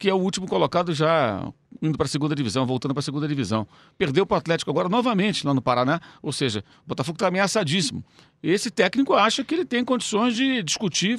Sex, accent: male, Brazilian